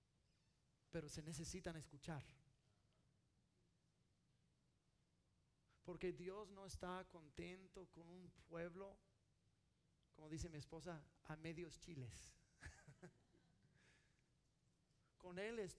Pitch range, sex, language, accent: 155-215 Hz, male, English, Mexican